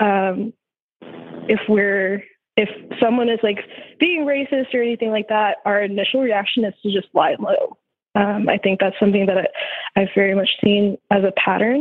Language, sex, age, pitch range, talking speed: English, female, 20-39, 195-225 Hz, 180 wpm